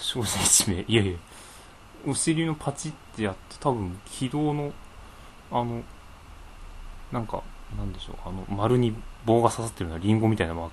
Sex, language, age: male, Japanese, 20-39